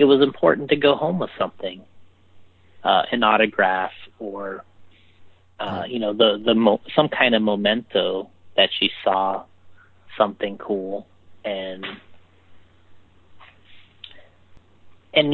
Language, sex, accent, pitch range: English, male, American, 90-115 Hz